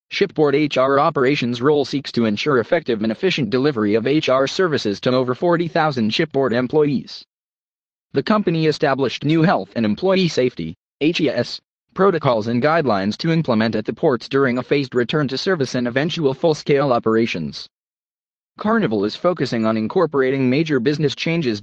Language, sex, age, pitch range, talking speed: English, male, 20-39, 115-155 Hz, 150 wpm